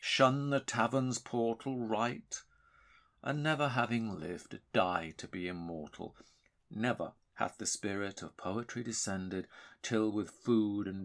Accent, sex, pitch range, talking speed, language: British, male, 90-115 Hz, 130 wpm, English